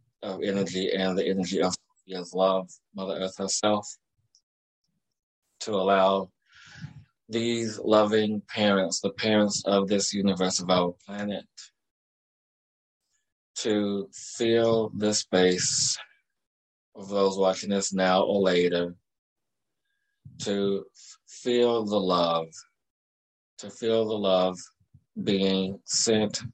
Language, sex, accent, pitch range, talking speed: English, male, American, 95-100 Hz, 100 wpm